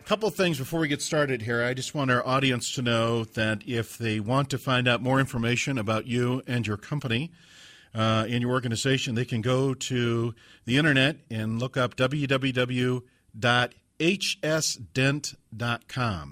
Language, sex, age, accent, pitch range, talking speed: English, male, 40-59, American, 110-130 Hz, 160 wpm